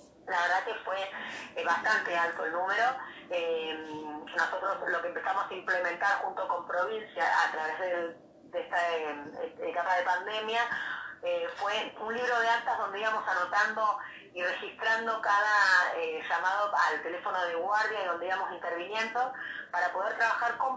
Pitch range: 175-240 Hz